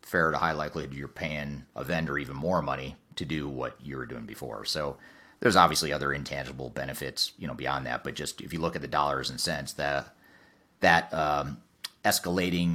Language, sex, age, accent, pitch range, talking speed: English, male, 30-49, American, 70-80 Hz, 195 wpm